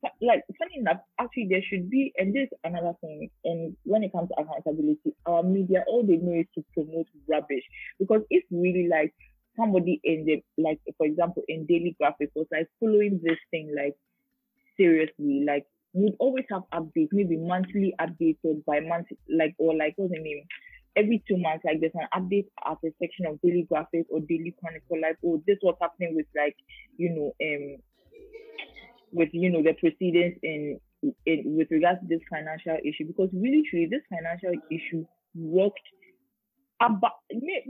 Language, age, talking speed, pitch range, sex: English, 20-39, 170 wpm, 165-215 Hz, female